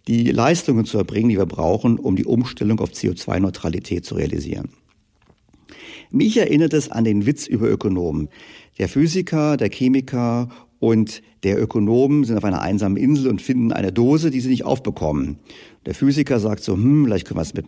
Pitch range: 100-140 Hz